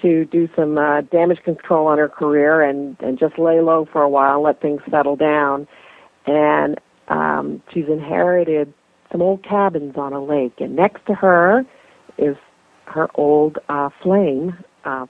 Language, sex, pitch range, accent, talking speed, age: English, female, 135-165 Hz, American, 165 wpm, 50-69